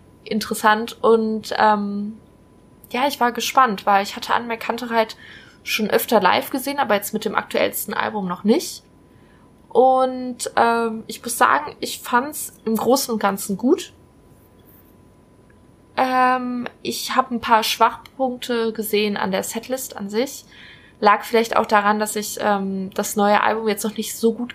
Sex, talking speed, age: female, 155 wpm, 20-39